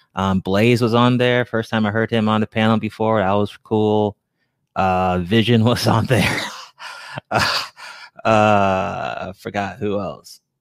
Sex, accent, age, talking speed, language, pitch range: male, American, 20-39, 160 wpm, English, 95-110 Hz